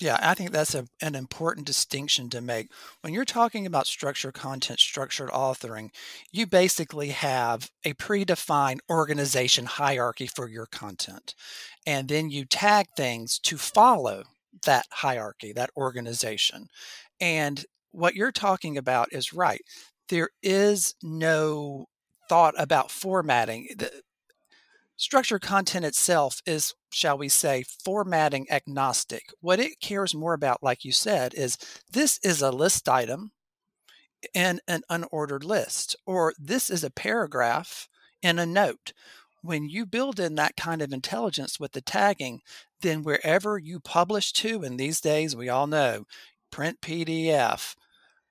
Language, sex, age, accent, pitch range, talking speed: English, male, 50-69, American, 135-185 Hz, 140 wpm